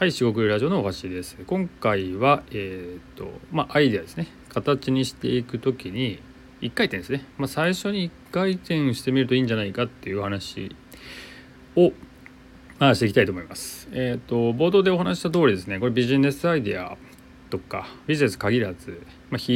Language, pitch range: Japanese, 95-135 Hz